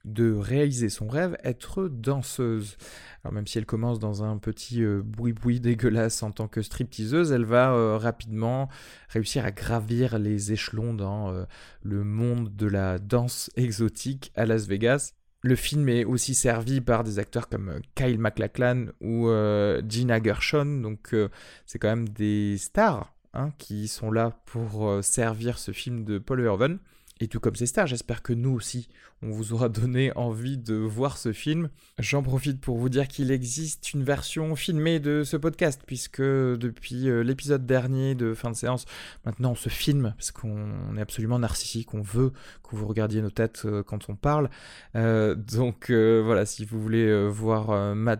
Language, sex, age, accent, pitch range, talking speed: French, male, 20-39, French, 110-130 Hz, 175 wpm